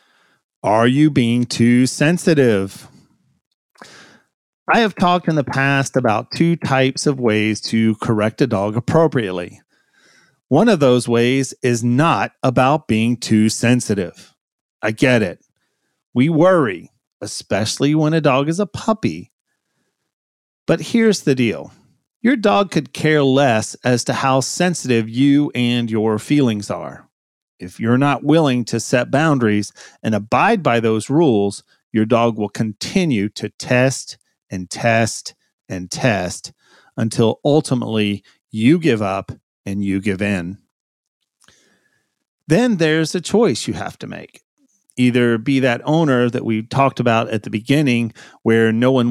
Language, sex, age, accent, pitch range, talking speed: English, male, 40-59, American, 110-145 Hz, 140 wpm